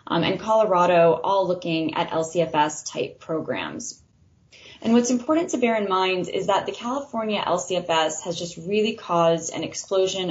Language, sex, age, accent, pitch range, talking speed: English, female, 10-29, American, 170-200 Hz, 150 wpm